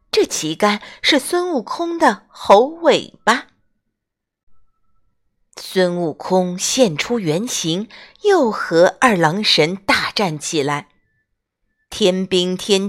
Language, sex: Chinese, female